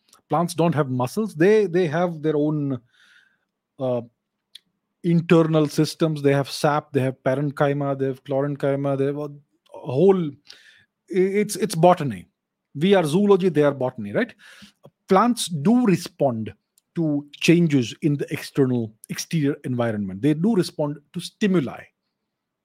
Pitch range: 145-185 Hz